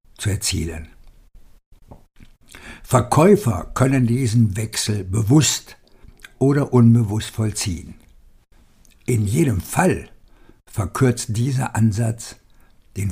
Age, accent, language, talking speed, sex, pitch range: 60-79, German, German, 80 wpm, male, 110-130 Hz